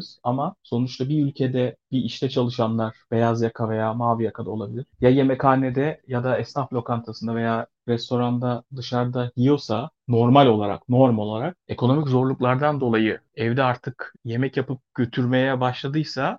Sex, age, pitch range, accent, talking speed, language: male, 40-59, 120-150 Hz, native, 135 wpm, Turkish